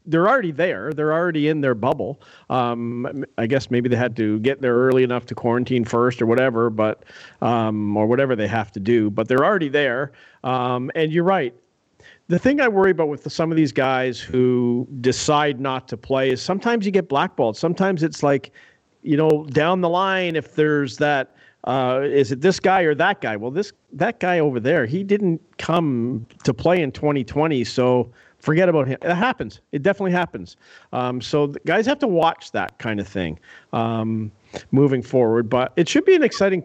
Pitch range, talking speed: 125-170 Hz, 200 wpm